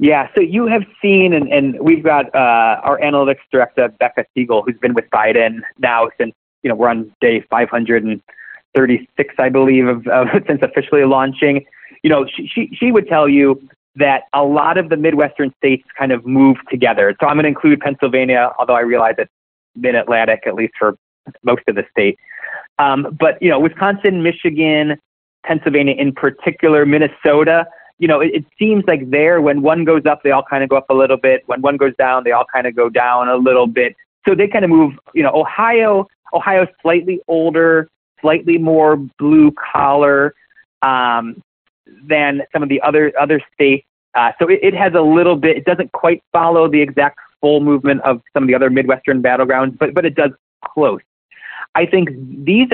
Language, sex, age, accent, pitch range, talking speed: English, male, 30-49, American, 130-165 Hz, 190 wpm